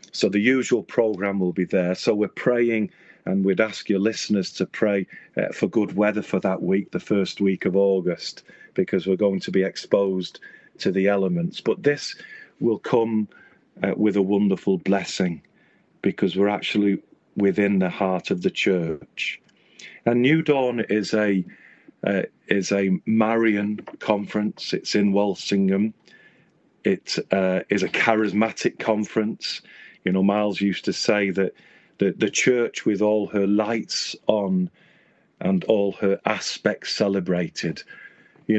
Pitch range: 95-110 Hz